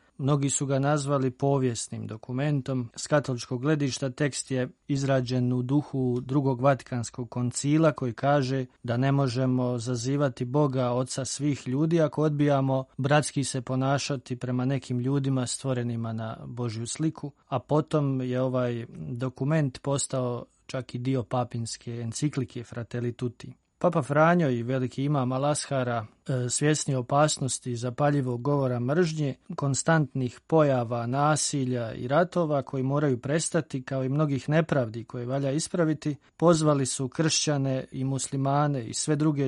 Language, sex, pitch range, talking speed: Croatian, male, 125-145 Hz, 130 wpm